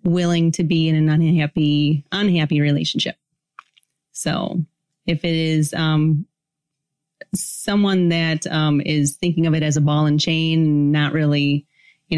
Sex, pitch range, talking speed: female, 145-165 Hz, 140 wpm